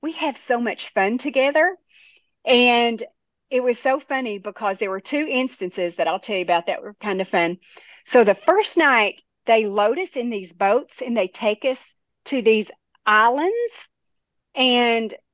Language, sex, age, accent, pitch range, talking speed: English, female, 40-59, American, 210-295 Hz, 170 wpm